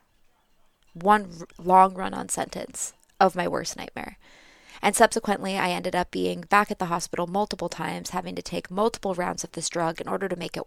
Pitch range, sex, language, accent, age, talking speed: 175-210 Hz, female, English, American, 20-39, 185 wpm